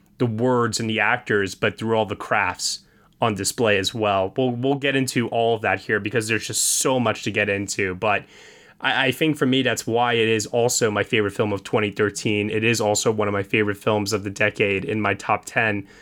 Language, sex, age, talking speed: English, male, 20-39, 230 wpm